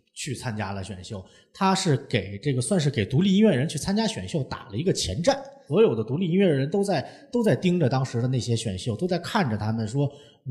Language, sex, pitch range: Chinese, male, 105-165 Hz